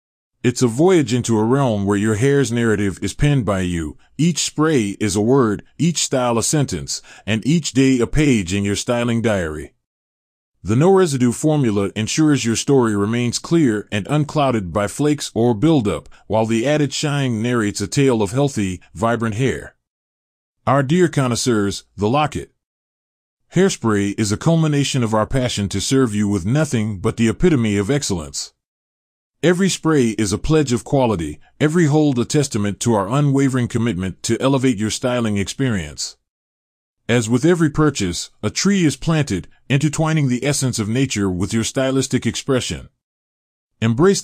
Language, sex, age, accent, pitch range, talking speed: English, male, 30-49, American, 100-140 Hz, 160 wpm